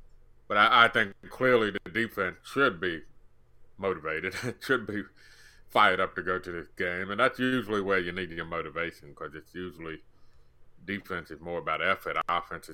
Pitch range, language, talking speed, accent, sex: 85-115 Hz, English, 170 wpm, American, male